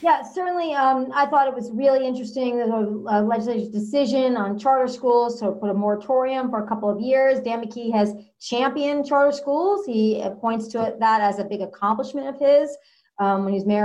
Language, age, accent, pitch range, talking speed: English, 40-59, American, 230-280 Hz, 200 wpm